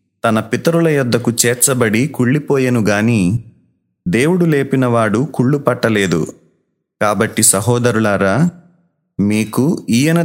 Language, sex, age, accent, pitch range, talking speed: Telugu, male, 30-49, native, 115-145 Hz, 80 wpm